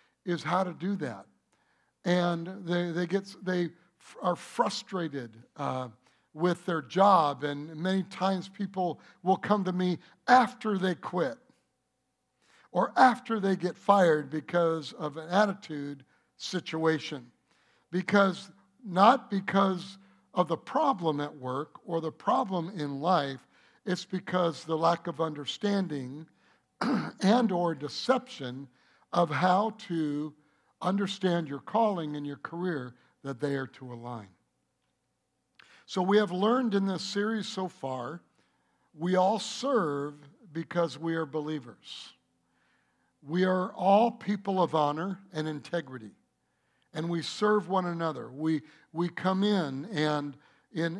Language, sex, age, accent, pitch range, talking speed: English, male, 60-79, American, 150-190 Hz, 125 wpm